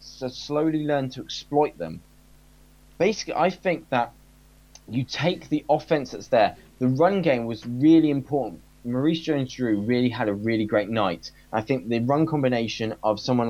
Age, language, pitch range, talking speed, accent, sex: 10-29, English, 110-145 Hz, 170 wpm, British, male